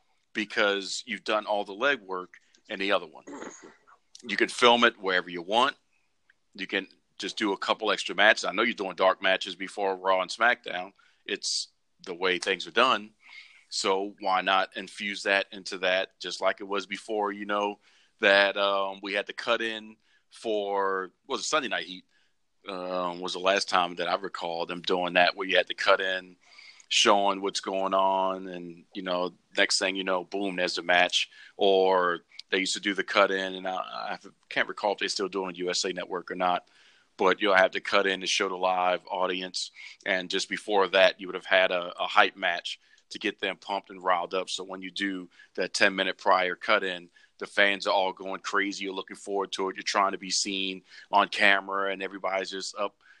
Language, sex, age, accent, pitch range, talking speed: English, male, 40-59, American, 95-100 Hz, 210 wpm